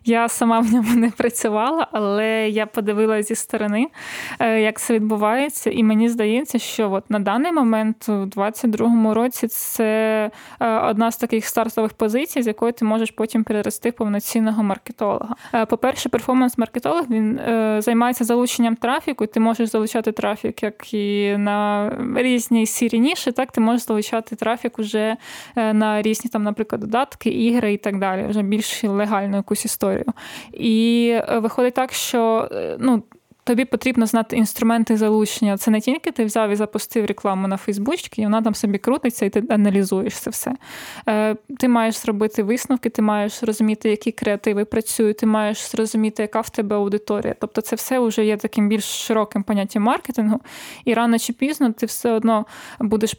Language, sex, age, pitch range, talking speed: Ukrainian, female, 20-39, 215-235 Hz, 160 wpm